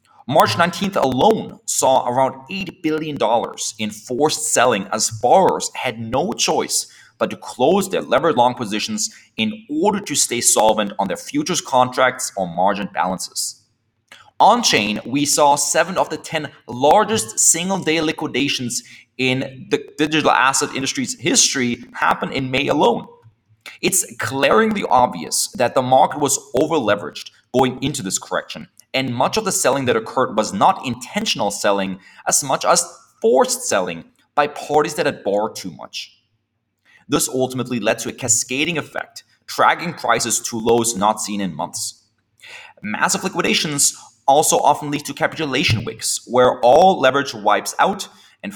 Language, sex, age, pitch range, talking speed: English, male, 30-49, 115-155 Hz, 145 wpm